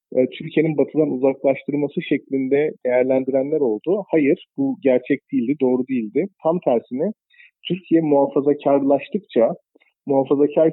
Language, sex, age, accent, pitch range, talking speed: German, male, 40-59, Turkish, 130-160 Hz, 95 wpm